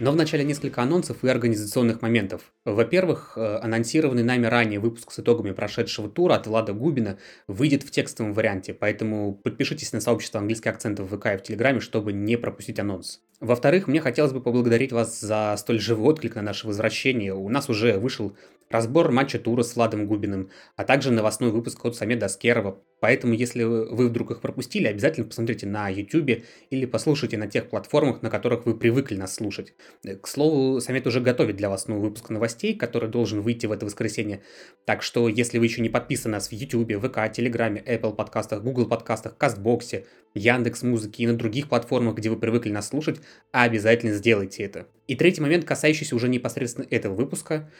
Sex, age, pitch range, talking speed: male, 20-39, 110-130 Hz, 180 wpm